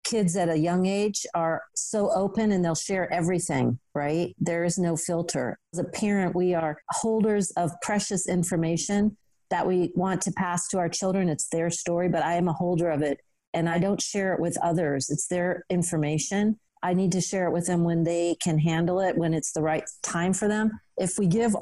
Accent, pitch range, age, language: American, 165-190 Hz, 40-59, English